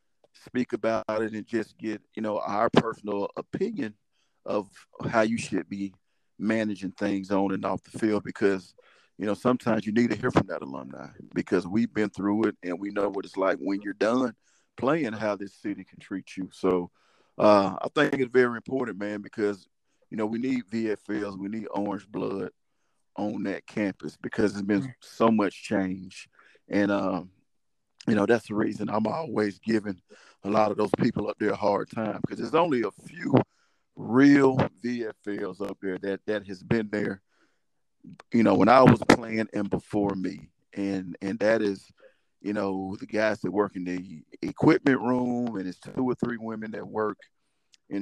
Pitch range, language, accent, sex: 100-115 Hz, English, American, male